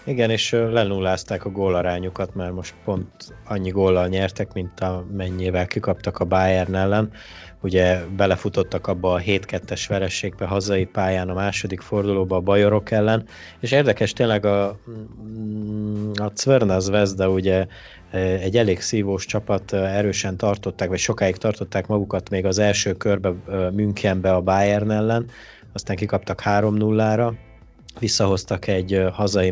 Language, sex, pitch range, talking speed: Hungarian, male, 95-105 Hz, 130 wpm